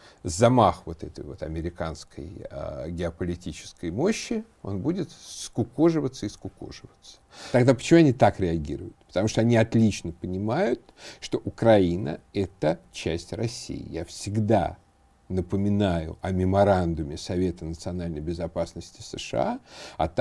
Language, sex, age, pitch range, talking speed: Russian, male, 50-69, 90-120 Hz, 110 wpm